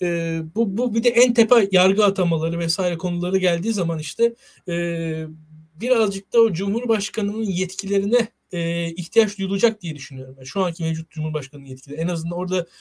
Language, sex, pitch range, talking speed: Turkish, male, 165-215 Hz, 160 wpm